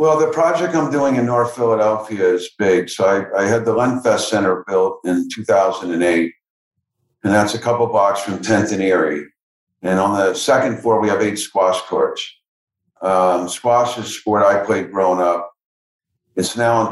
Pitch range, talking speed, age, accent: 95-115 Hz, 175 wpm, 50-69, American